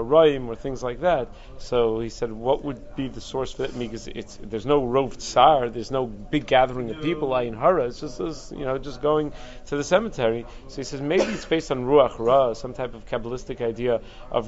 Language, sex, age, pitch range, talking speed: English, male, 30-49, 115-140 Hz, 220 wpm